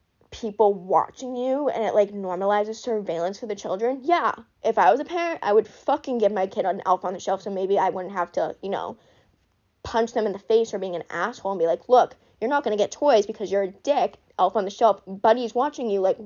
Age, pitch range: 10-29, 190-255 Hz